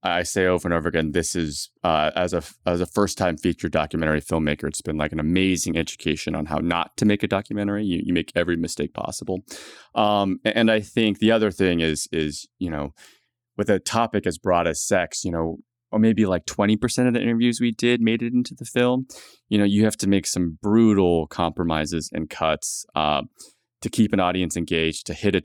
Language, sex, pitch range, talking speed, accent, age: English, male, 85-110 Hz, 215 wpm, American, 20-39